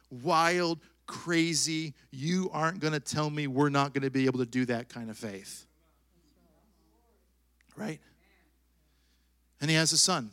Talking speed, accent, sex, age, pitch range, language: 150 wpm, American, male, 40-59, 120-200 Hz, English